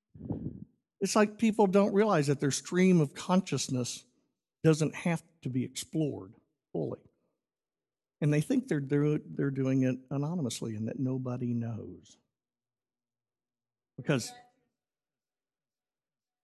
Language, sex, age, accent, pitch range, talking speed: English, male, 50-69, American, 140-210 Hz, 110 wpm